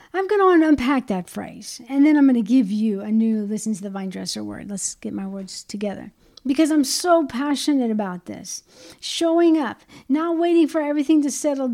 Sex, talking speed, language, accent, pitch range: female, 205 wpm, English, American, 210-270 Hz